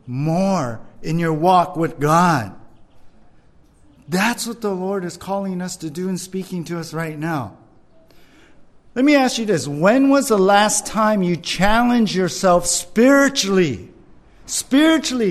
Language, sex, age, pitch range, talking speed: English, male, 50-69, 175-245 Hz, 140 wpm